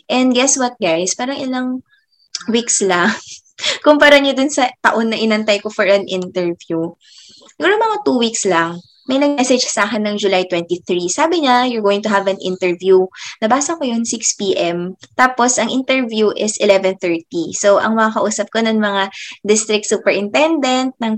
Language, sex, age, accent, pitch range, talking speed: Filipino, female, 20-39, native, 190-255 Hz, 165 wpm